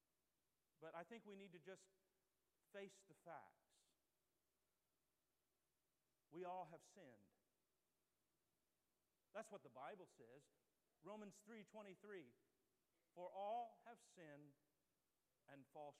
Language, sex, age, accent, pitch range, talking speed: English, male, 50-69, American, 155-215 Hz, 100 wpm